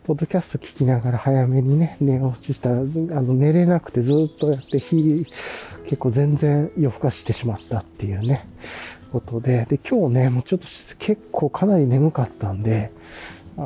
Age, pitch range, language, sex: 40-59, 115-165 Hz, Japanese, male